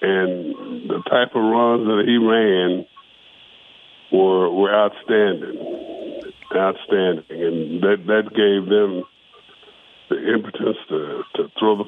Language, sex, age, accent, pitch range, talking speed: English, female, 60-79, American, 100-115 Hz, 115 wpm